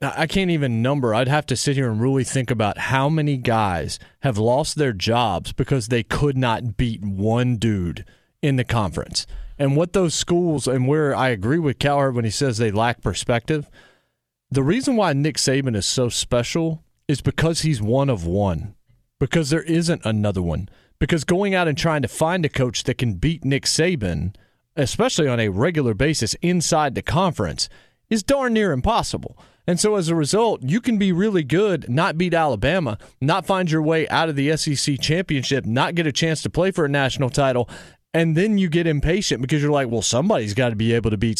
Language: English